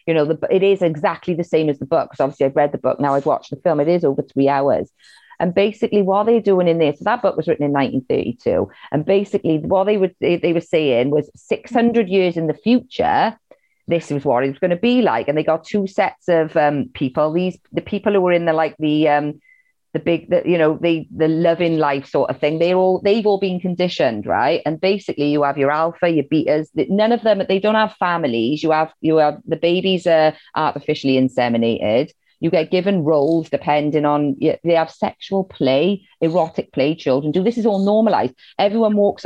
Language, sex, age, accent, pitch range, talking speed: English, female, 30-49, British, 155-195 Hz, 220 wpm